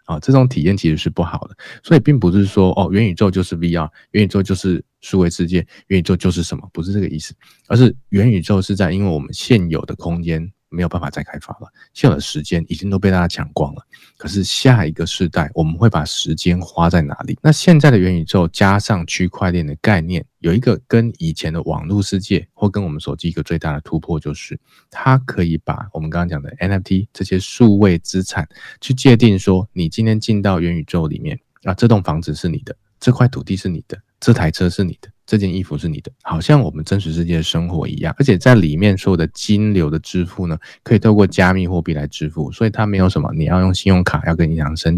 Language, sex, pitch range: Chinese, male, 85-105 Hz